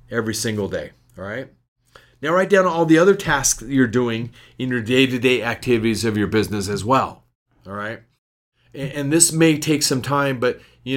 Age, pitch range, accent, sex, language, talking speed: 40-59, 115-140 Hz, American, male, English, 185 wpm